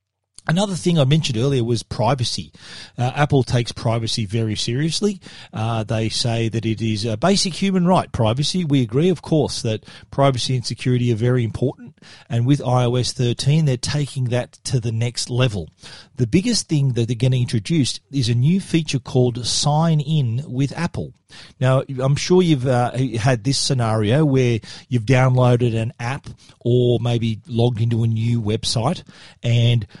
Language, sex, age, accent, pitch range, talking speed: English, male, 40-59, Australian, 115-145 Hz, 165 wpm